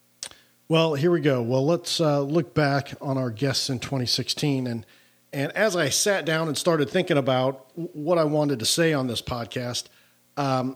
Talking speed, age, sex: 185 wpm, 40-59, male